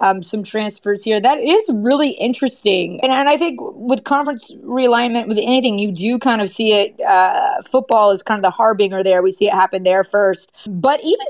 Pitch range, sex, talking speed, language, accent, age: 210-280 Hz, female, 205 wpm, English, American, 30-49